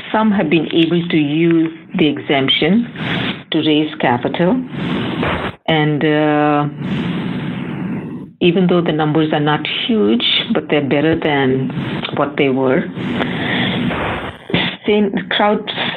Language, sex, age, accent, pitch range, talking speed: English, female, 50-69, Indian, 145-185 Hz, 105 wpm